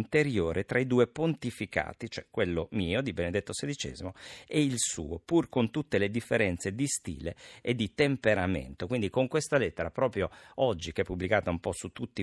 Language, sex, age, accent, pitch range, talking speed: Italian, male, 50-69, native, 90-125 Hz, 180 wpm